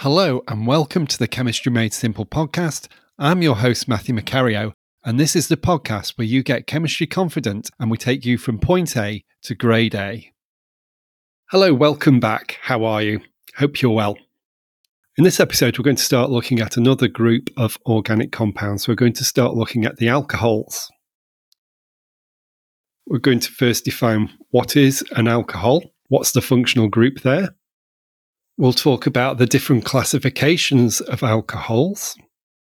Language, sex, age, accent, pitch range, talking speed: English, male, 30-49, British, 115-140 Hz, 160 wpm